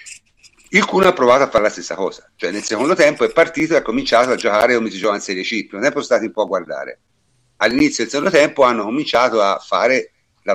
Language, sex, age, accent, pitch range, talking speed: Italian, male, 50-69, native, 105-145 Hz, 230 wpm